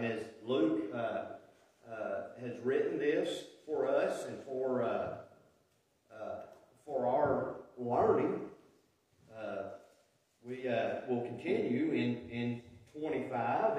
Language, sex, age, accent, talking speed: English, male, 40-59, American, 110 wpm